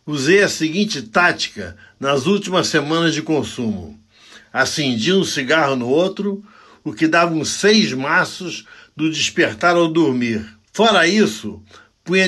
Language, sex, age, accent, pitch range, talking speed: Portuguese, male, 60-79, Brazilian, 120-180 Hz, 130 wpm